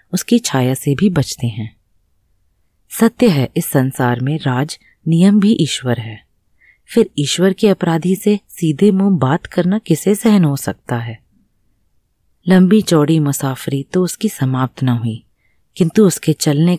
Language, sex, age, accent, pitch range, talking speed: Hindi, female, 30-49, native, 125-180 Hz, 145 wpm